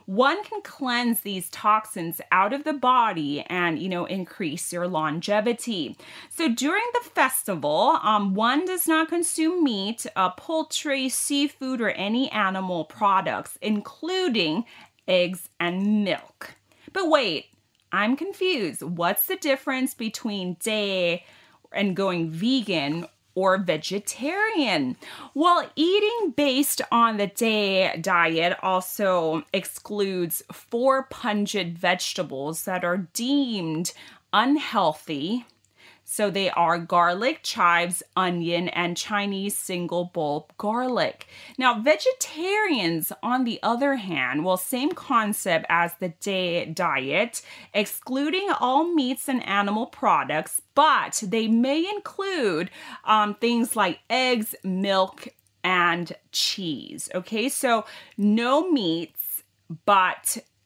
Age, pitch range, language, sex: 30-49, 180-275 Hz, Thai, female